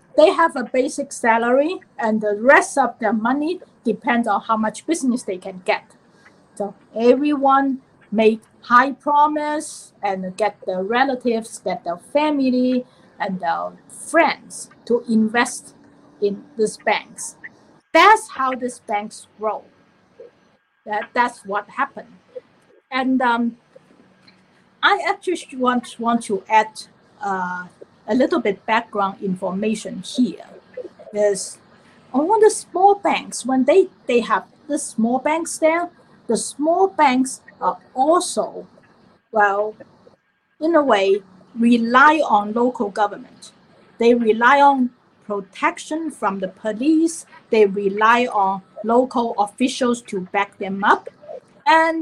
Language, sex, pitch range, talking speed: English, female, 210-285 Hz, 120 wpm